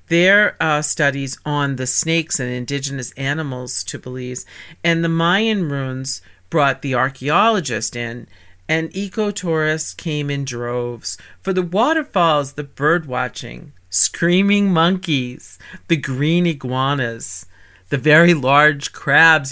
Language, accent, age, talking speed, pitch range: English, American, 40-59, 120 wpm, 130-180 Hz